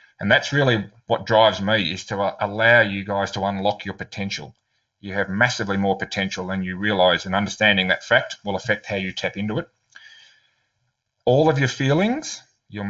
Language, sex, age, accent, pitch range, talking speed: English, male, 30-49, Australian, 105-125 Hz, 180 wpm